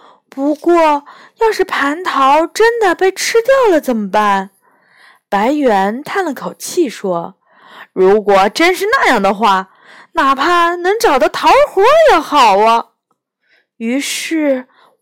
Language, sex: Chinese, female